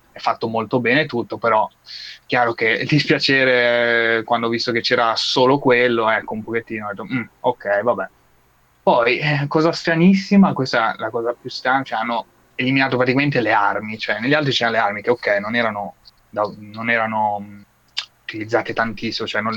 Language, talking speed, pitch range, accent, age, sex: Italian, 185 wpm, 105-125 Hz, native, 20-39, male